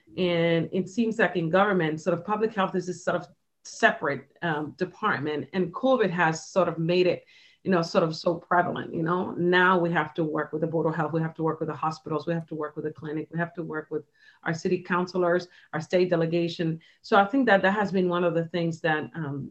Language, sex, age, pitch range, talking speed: English, female, 40-59, 160-190 Hz, 245 wpm